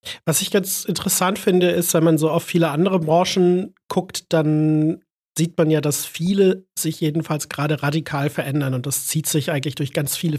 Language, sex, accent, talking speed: German, male, German, 190 wpm